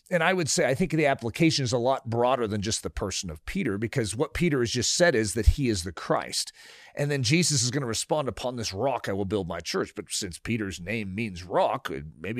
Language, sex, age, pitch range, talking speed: English, male, 40-59, 120-180 Hz, 250 wpm